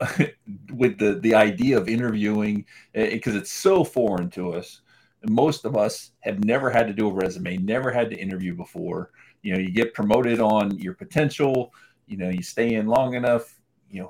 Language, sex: English, male